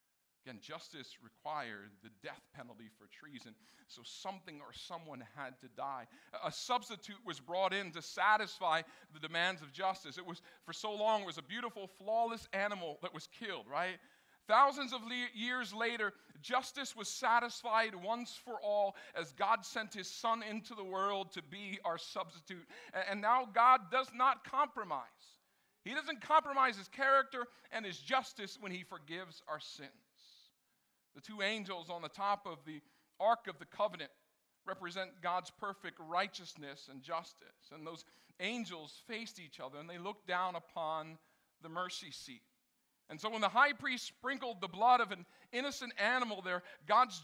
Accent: American